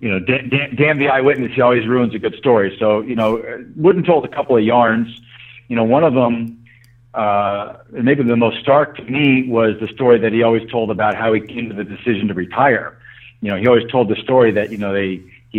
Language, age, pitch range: English, 50-69, 110-130 Hz